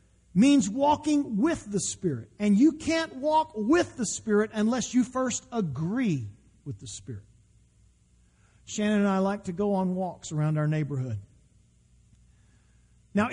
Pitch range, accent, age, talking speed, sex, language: 170-260 Hz, American, 50-69, 140 wpm, male, English